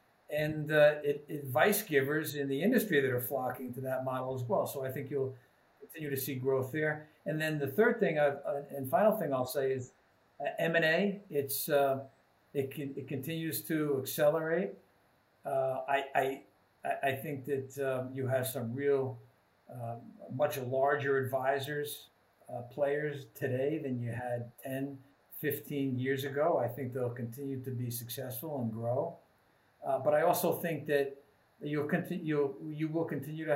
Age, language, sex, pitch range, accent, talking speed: 50-69, English, male, 130-150 Hz, American, 165 wpm